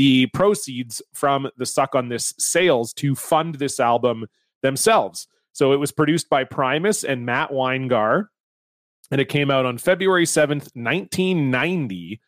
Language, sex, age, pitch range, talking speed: English, male, 30-49, 120-150 Hz, 145 wpm